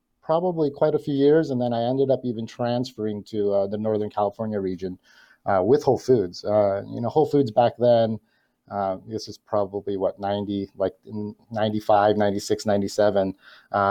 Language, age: English, 30-49